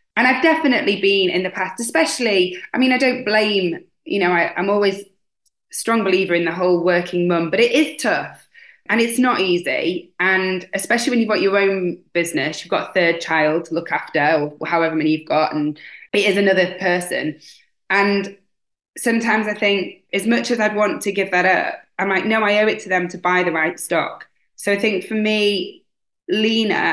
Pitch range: 175-230 Hz